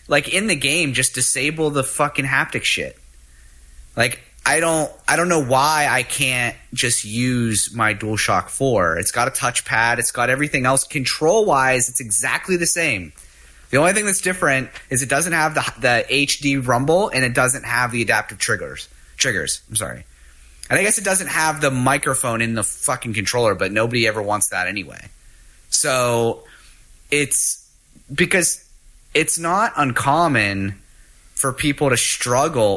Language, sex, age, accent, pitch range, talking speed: English, male, 30-49, American, 110-140 Hz, 160 wpm